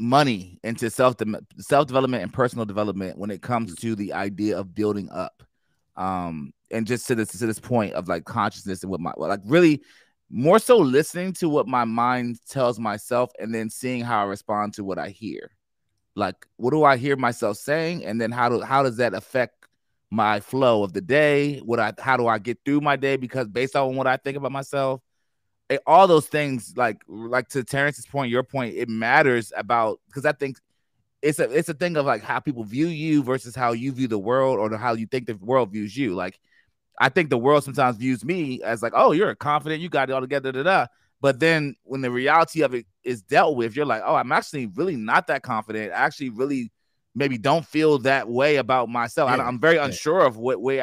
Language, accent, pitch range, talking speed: English, American, 110-140 Hz, 220 wpm